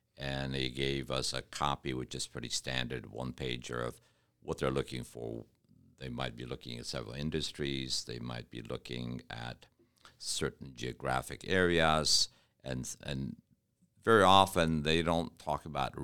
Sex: male